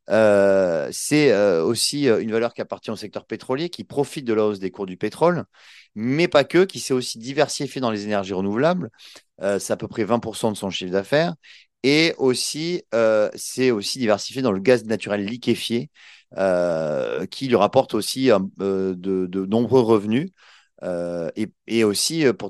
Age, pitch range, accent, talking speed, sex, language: 30-49, 105-135 Hz, French, 180 wpm, male, French